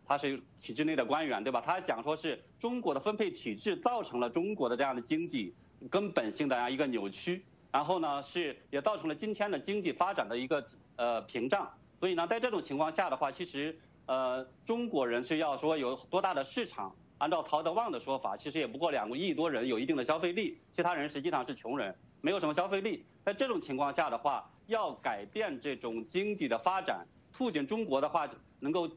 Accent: Chinese